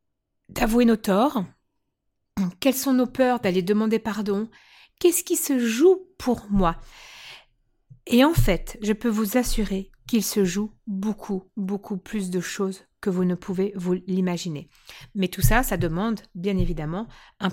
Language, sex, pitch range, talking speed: French, female, 190-240 Hz, 155 wpm